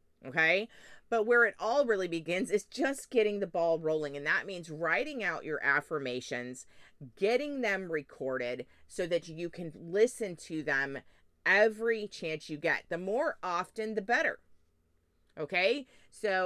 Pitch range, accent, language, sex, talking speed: 150-215 Hz, American, English, female, 150 wpm